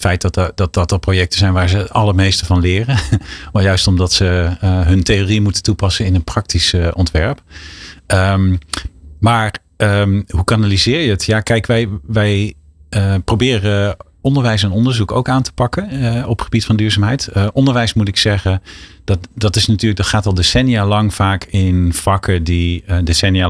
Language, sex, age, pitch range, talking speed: Dutch, male, 40-59, 90-105 Hz, 190 wpm